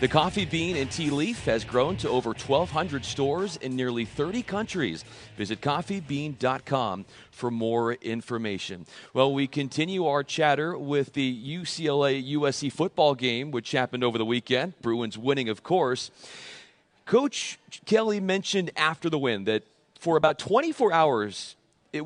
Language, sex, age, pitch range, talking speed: English, male, 40-59, 125-170 Hz, 140 wpm